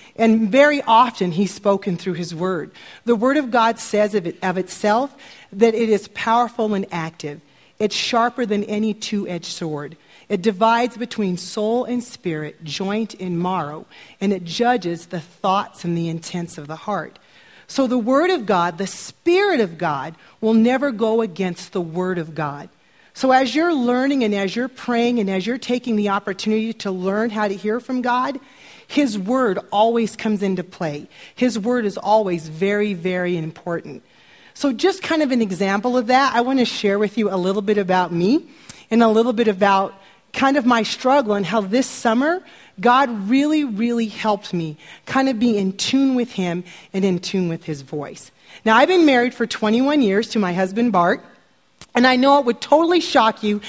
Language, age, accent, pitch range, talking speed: English, 40-59, American, 185-245 Hz, 190 wpm